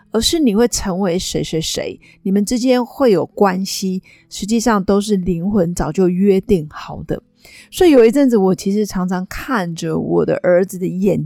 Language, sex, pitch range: Chinese, female, 180-235 Hz